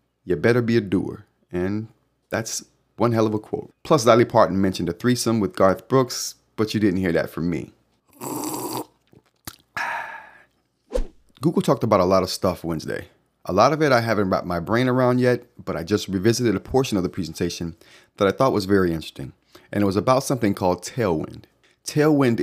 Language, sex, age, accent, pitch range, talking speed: English, male, 30-49, American, 90-115 Hz, 185 wpm